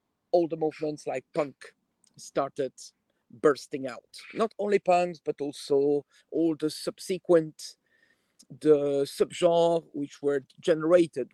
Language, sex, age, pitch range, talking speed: English, male, 50-69, 140-170 Hz, 110 wpm